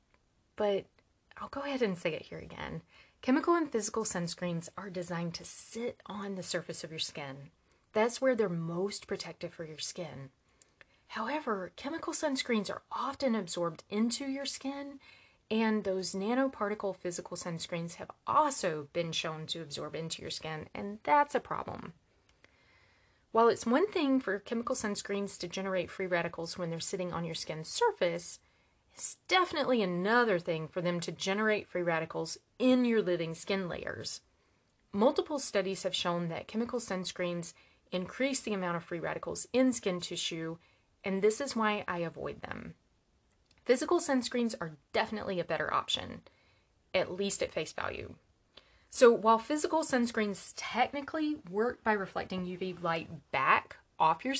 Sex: female